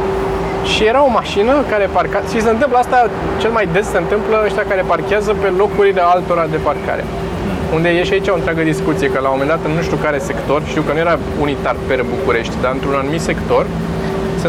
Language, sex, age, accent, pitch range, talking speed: Romanian, male, 20-39, native, 160-205 Hz, 210 wpm